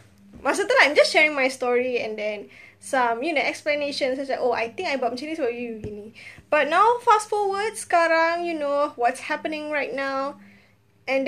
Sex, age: female, 10-29